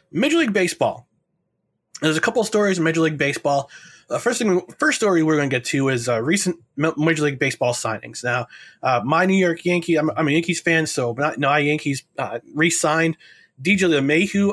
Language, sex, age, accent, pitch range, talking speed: English, male, 30-49, American, 135-175 Hz, 200 wpm